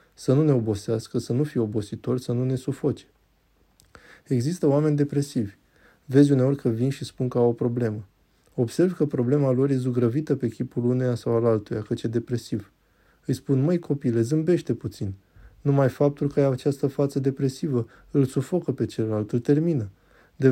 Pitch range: 120-145 Hz